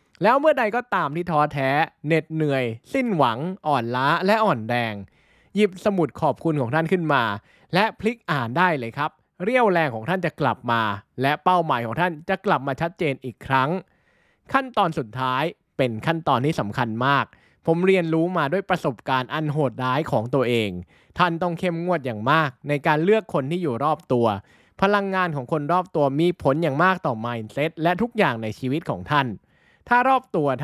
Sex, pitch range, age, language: male, 130-185 Hz, 20-39, Thai